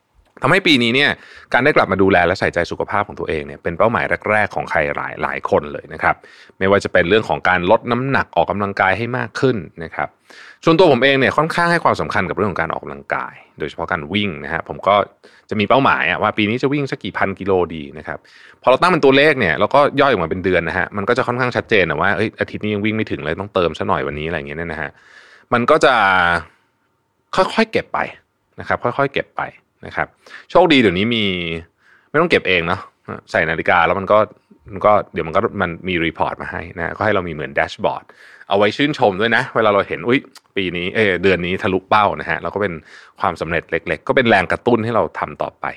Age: 20-39